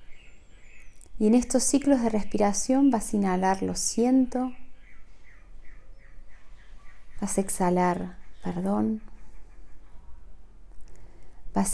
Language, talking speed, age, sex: Spanish, 80 wpm, 30-49, female